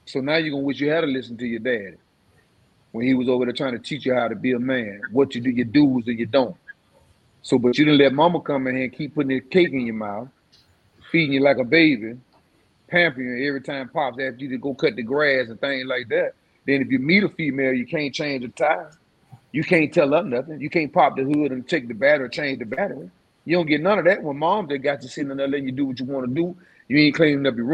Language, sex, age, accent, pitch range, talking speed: English, male, 30-49, American, 130-170 Hz, 275 wpm